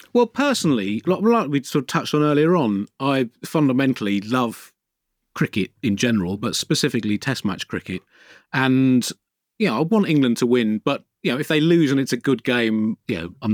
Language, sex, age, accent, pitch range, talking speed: English, male, 40-59, British, 105-150 Hz, 180 wpm